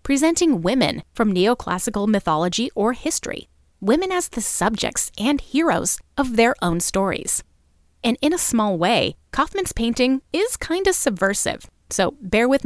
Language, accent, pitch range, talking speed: English, American, 185-250 Hz, 145 wpm